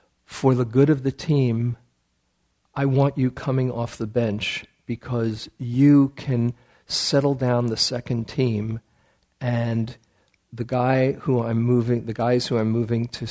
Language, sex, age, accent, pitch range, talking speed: English, male, 50-69, American, 110-130 Hz, 150 wpm